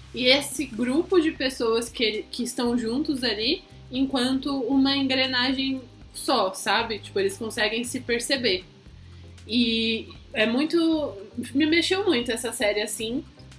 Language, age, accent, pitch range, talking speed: Portuguese, 20-39, Brazilian, 225-275 Hz, 130 wpm